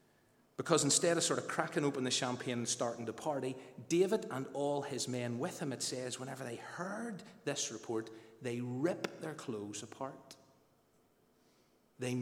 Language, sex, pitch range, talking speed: English, male, 120-180 Hz, 160 wpm